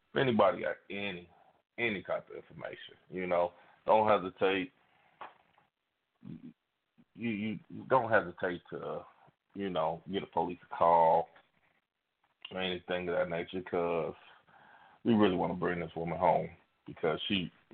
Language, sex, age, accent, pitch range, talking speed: English, male, 30-49, American, 90-105 Hz, 135 wpm